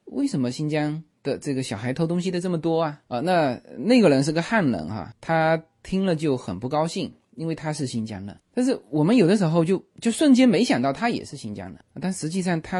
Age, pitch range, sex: 30-49, 125-190 Hz, male